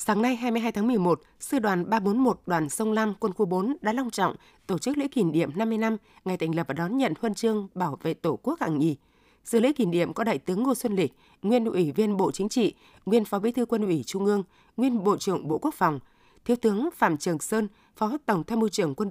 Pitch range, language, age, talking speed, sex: 175-235 Hz, Vietnamese, 20-39, 250 wpm, female